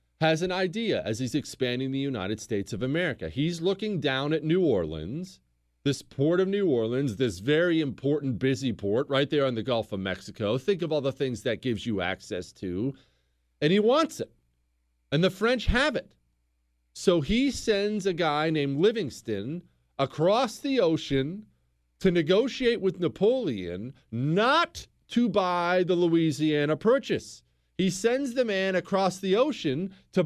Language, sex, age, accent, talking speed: English, male, 40-59, American, 160 wpm